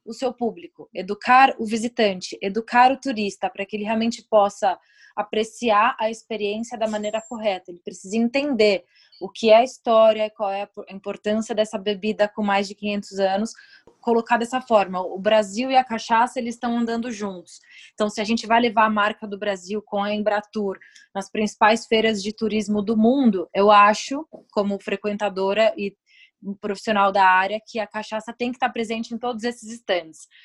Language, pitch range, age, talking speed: Portuguese, 200-230 Hz, 20-39, 180 wpm